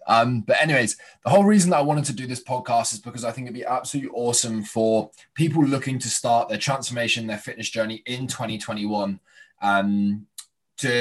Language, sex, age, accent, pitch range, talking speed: English, male, 20-39, British, 105-120 Hz, 190 wpm